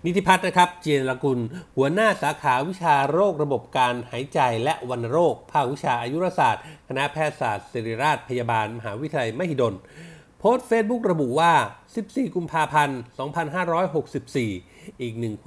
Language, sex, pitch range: Thai, male, 125-180 Hz